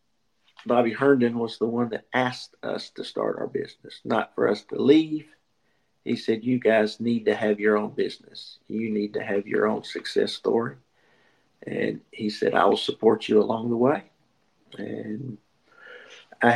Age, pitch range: 50-69, 110-135 Hz